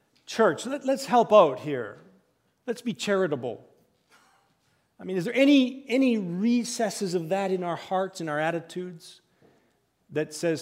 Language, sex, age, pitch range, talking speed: English, male, 40-59, 145-180 Hz, 145 wpm